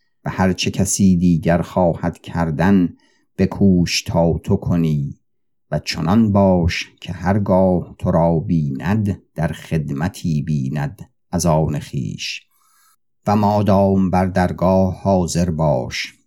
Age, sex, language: 50-69, male, Persian